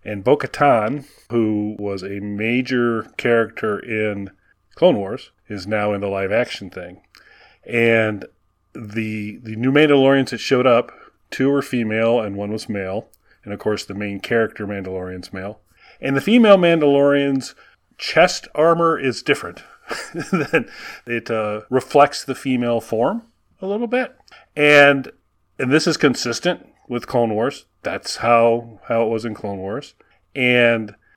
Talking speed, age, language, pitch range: 140 wpm, 40-59, English, 105-135 Hz